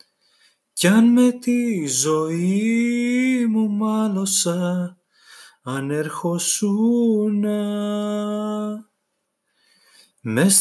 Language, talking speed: Greek, 55 wpm